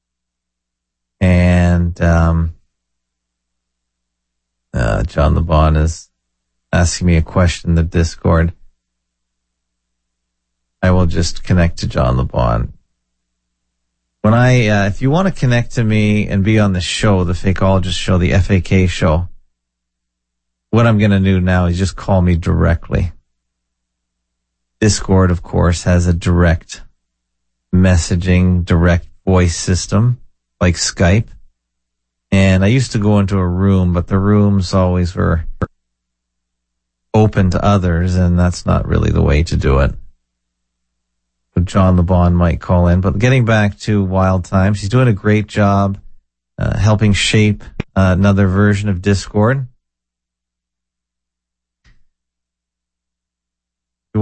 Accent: American